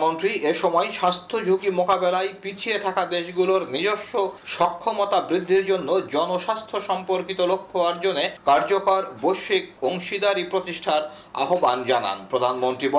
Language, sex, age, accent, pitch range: Bengali, male, 50-69, native, 185-245 Hz